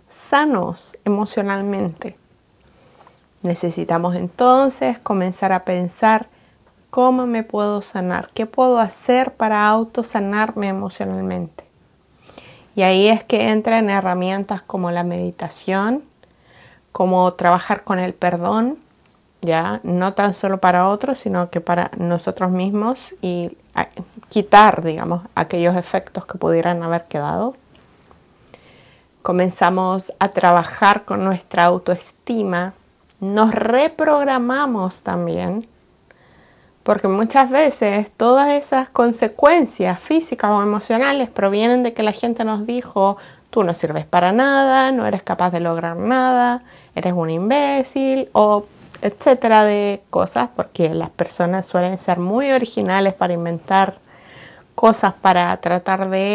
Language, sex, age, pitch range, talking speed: Spanish, female, 30-49, 180-230 Hz, 115 wpm